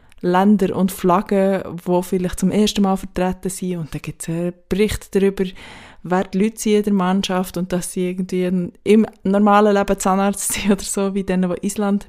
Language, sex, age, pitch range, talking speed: German, female, 20-39, 180-210 Hz, 190 wpm